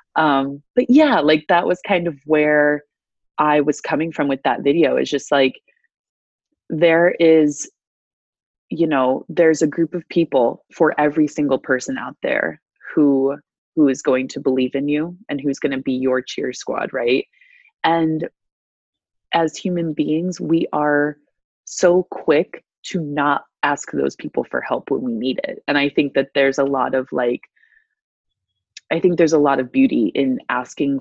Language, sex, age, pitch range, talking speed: English, female, 20-39, 130-165 Hz, 170 wpm